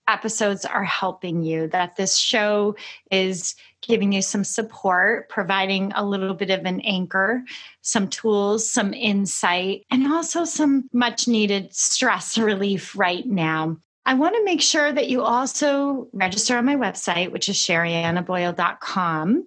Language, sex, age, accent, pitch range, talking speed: English, female, 30-49, American, 185-245 Hz, 145 wpm